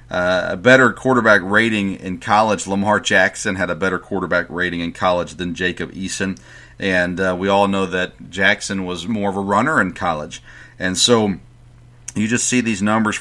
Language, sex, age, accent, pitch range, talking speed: English, male, 40-59, American, 90-110 Hz, 180 wpm